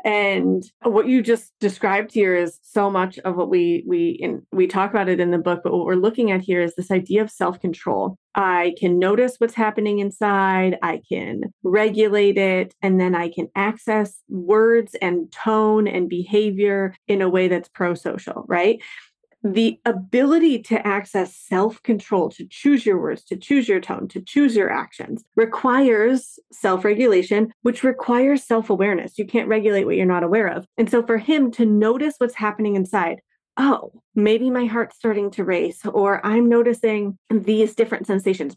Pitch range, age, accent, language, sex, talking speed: 185-230 Hz, 30-49, American, English, female, 170 wpm